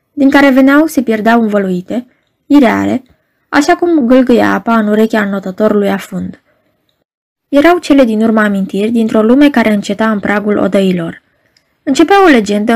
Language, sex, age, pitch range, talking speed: Romanian, female, 20-39, 200-265 Hz, 140 wpm